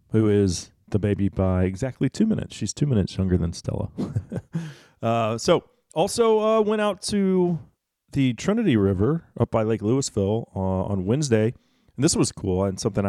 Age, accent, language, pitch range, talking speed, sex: 40-59, American, English, 95-120 Hz, 170 wpm, male